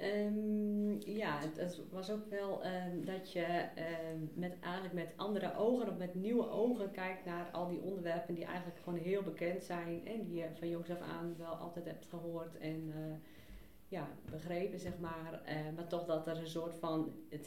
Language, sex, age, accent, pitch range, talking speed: Dutch, female, 40-59, Dutch, 160-180 Hz, 195 wpm